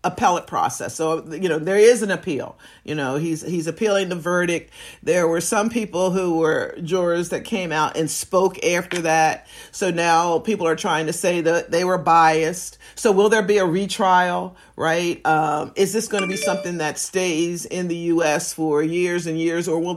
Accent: American